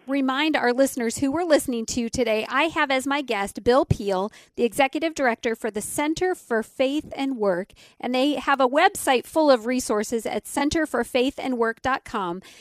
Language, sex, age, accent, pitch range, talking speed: English, female, 40-59, American, 215-265 Hz, 165 wpm